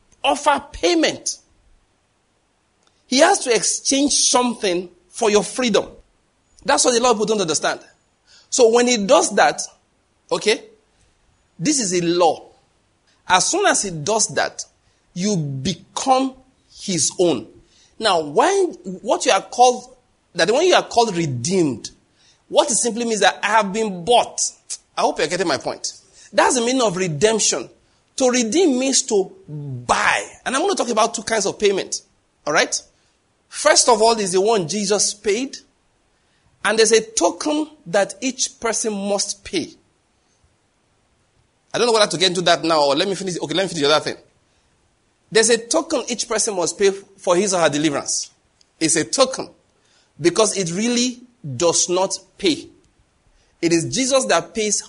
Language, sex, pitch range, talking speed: English, male, 180-255 Hz, 165 wpm